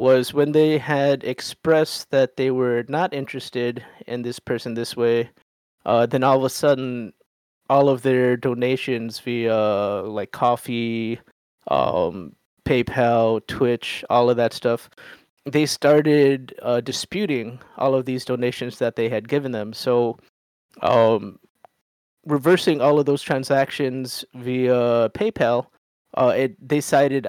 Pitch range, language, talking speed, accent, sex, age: 115-135 Hz, English, 130 wpm, American, male, 20-39